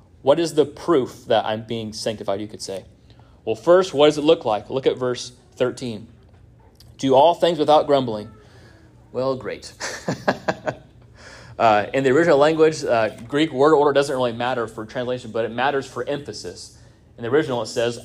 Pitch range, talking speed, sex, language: 115-150 Hz, 175 wpm, male, English